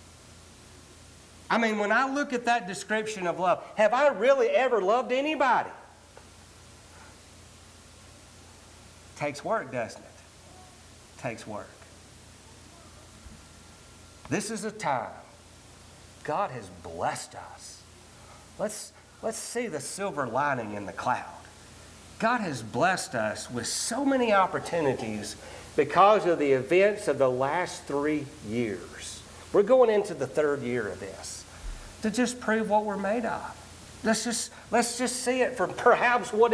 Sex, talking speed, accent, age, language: male, 135 wpm, American, 50-69, English